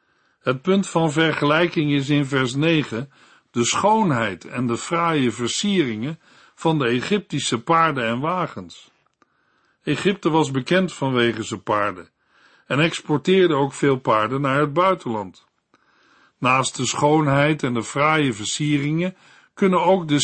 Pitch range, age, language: 130-170 Hz, 50-69, Dutch